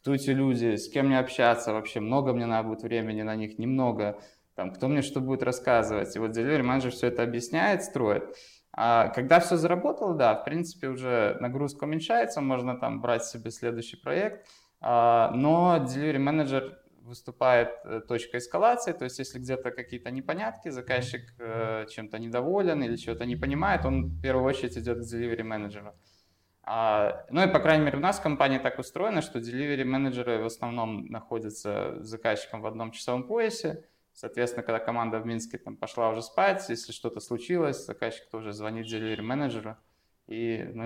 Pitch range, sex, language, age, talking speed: 115-145 Hz, male, Russian, 20-39, 170 wpm